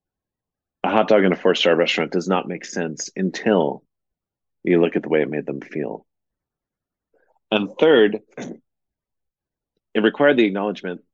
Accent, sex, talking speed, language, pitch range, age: American, male, 145 wpm, English, 85-100 Hz, 40-59